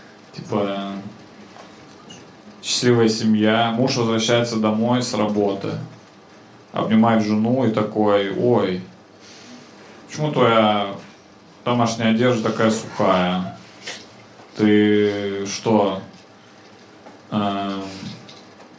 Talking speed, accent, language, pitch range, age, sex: 70 wpm, native, Russian, 105-130 Hz, 30-49, male